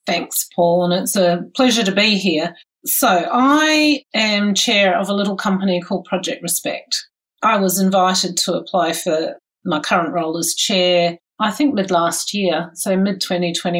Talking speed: 160 wpm